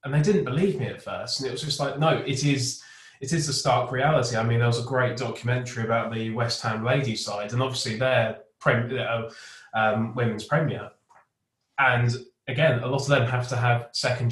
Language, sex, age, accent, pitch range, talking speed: English, male, 20-39, British, 115-140 Hz, 205 wpm